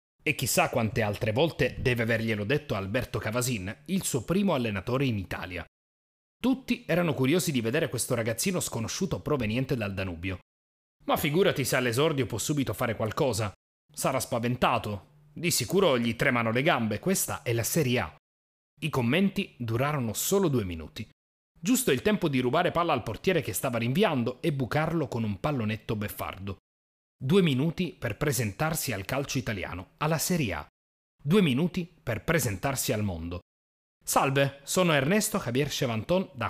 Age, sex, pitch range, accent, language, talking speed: 30-49, male, 100-155 Hz, native, Italian, 155 wpm